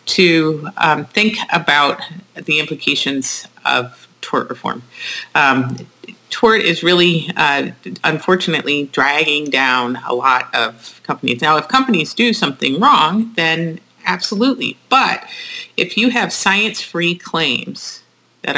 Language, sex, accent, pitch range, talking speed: English, female, American, 125-175 Hz, 115 wpm